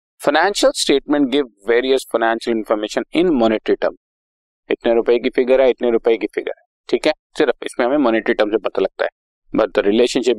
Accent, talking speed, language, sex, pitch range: native, 190 wpm, Hindi, male, 120-150 Hz